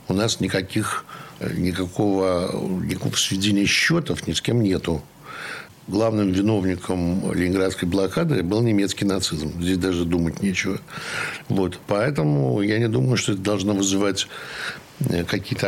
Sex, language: male, Russian